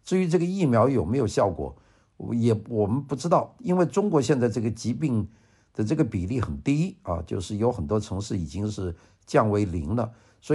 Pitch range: 100-130 Hz